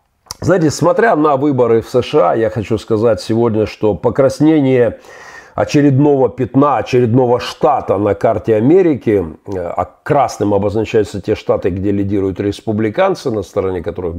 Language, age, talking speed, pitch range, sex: Russian, 50-69, 125 wpm, 95-125 Hz, male